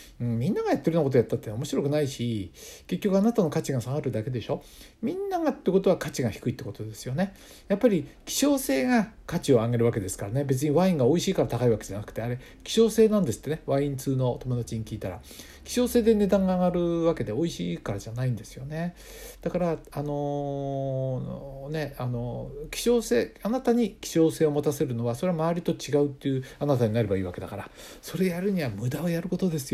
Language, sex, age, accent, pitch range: Japanese, male, 60-79, native, 120-170 Hz